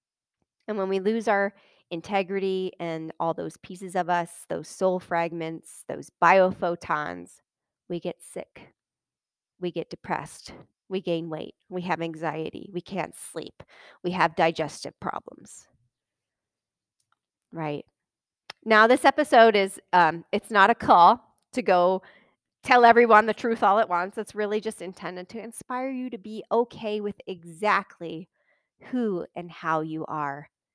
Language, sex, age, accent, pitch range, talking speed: English, female, 30-49, American, 165-205 Hz, 140 wpm